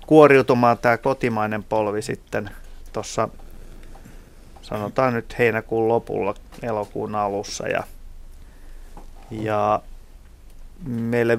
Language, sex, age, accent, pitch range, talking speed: Finnish, male, 30-49, native, 105-125 Hz, 80 wpm